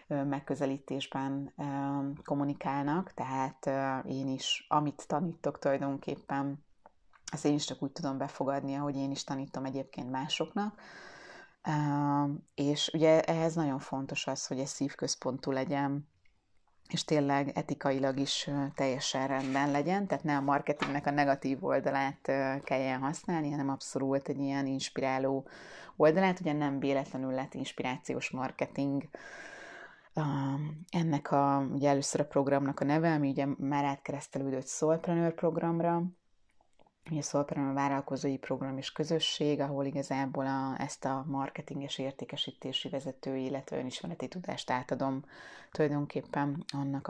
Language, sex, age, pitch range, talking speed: Hungarian, female, 30-49, 135-150 Hz, 125 wpm